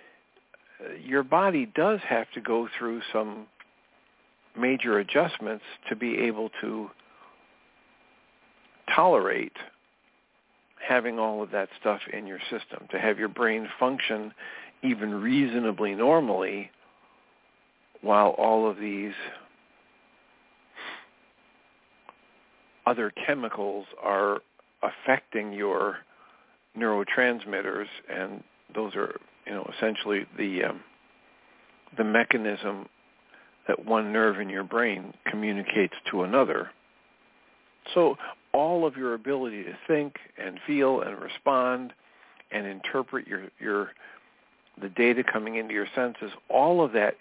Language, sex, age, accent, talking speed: English, male, 50-69, American, 105 wpm